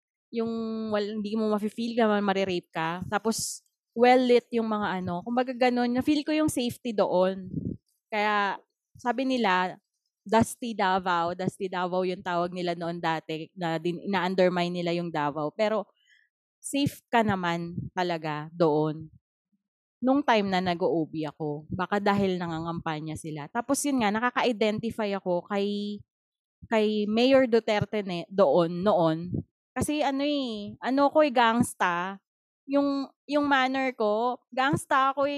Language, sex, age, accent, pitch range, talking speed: Filipino, female, 20-39, native, 185-255 Hz, 135 wpm